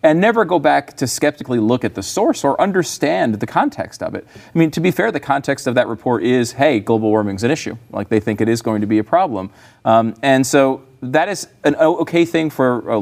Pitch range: 110-160 Hz